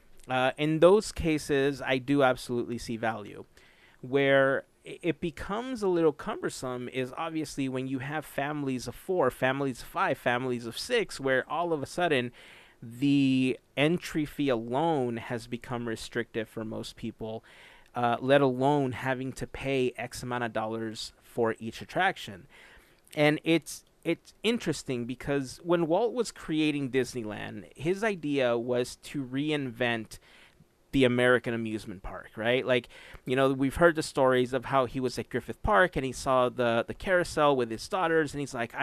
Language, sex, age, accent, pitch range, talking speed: English, male, 30-49, American, 120-150 Hz, 160 wpm